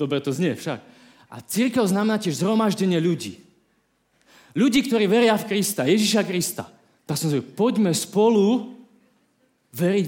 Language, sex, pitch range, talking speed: Slovak, male, 145-200 Hz, 135 wpm